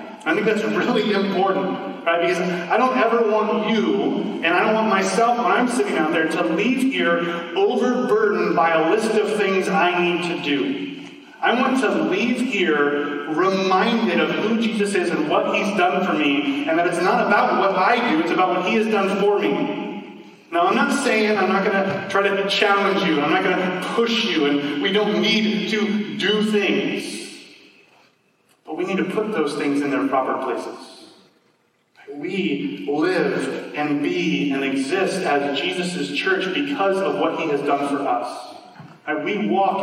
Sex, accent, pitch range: male, American, 175-220 Hz